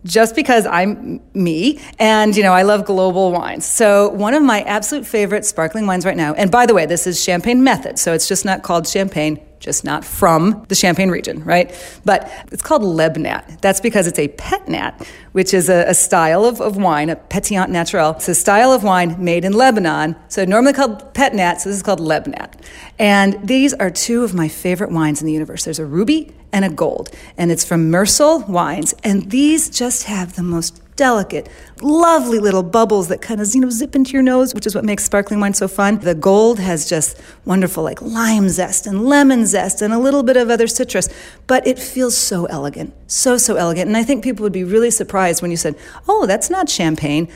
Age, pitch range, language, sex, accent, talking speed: 40-59, 180-255 Hz, English, female, American, 215 wpm